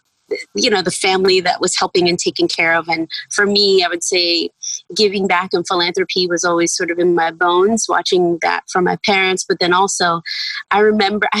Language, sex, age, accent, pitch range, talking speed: English, female, 20-39, American, 175-220 Hz, 205 wpm